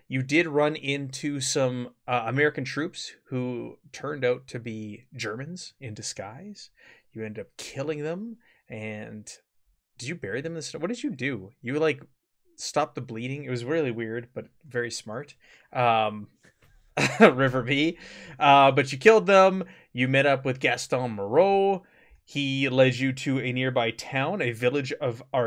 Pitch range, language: 115-150 Hz, English